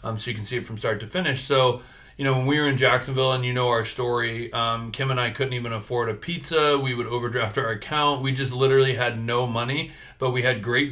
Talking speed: 260 wpm